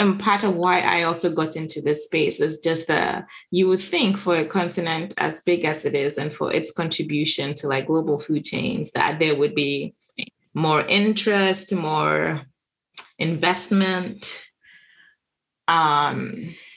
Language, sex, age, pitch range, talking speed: English, female, 20-39, 155-195 Hz, 150 wpm